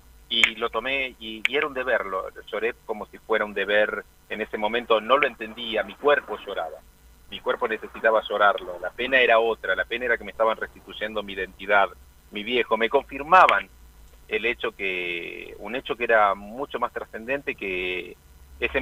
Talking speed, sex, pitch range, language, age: 185 wpm, male, 90-140 Hz, Spanish, 40-59